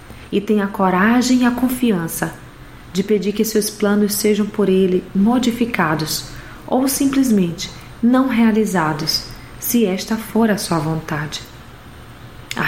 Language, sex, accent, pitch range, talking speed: Portuguese, female, Brazilian, 180-220 Hz, 130 wpm